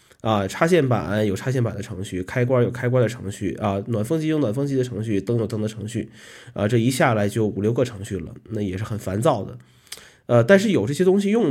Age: 20-39